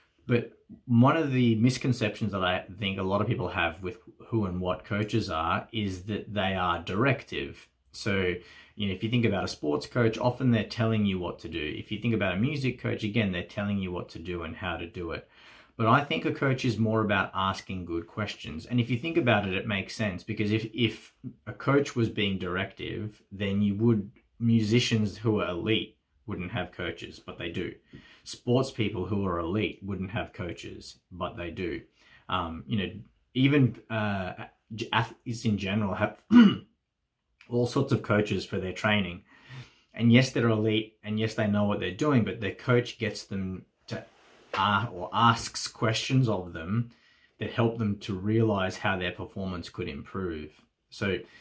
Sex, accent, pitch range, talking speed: male, Australian, 95-115 Hz, 190 wpm